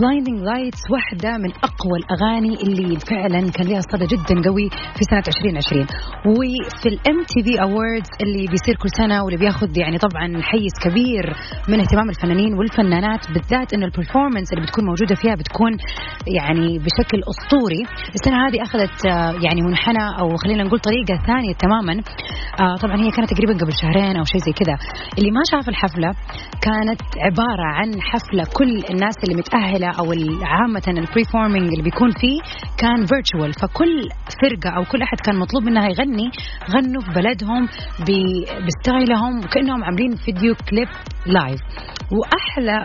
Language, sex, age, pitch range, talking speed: Arabic, female, 30-49, 180-235 Hz, 145 wpm